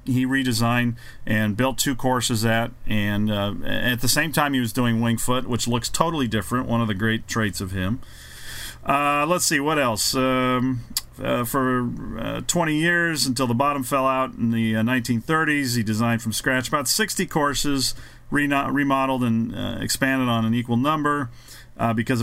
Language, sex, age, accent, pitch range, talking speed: English, male, 40-59, American, 115-140 Hz, 180 wpm